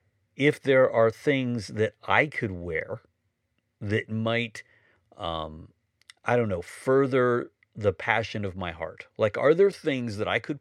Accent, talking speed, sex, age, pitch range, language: American, 155 wpm, male, 50-69, 95-125 Hz, English